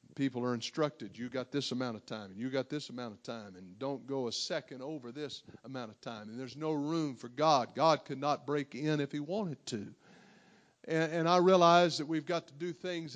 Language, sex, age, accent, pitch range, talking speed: English, male, 50-69, American, 145-185 Hz, 235 wpm